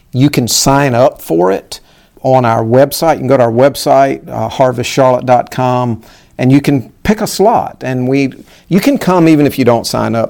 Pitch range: 120-145 Hz